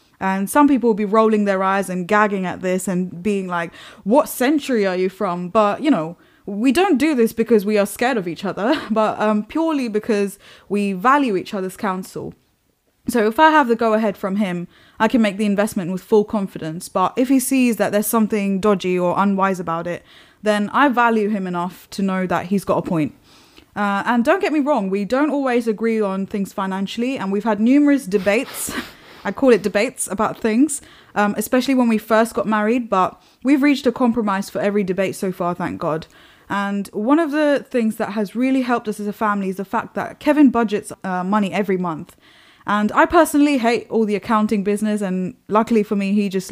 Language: English